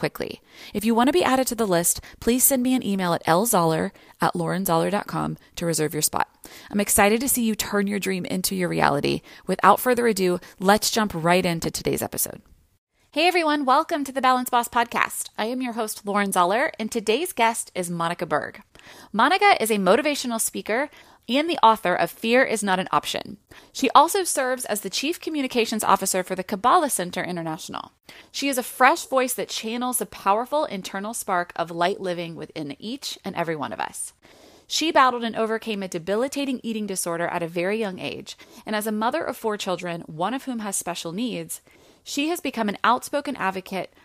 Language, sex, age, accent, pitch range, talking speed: English, female, 30-49, American, 180-255 Hz, 195 wpm